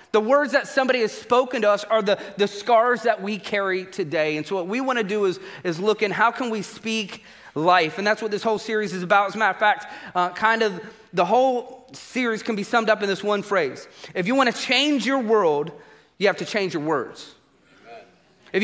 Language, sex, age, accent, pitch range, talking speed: English, male, 30-49, American, 200-255 Hz, 235 wpm